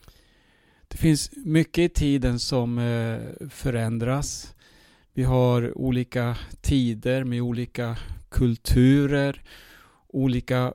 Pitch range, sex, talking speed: 115-135 Hz, male, 85 wpm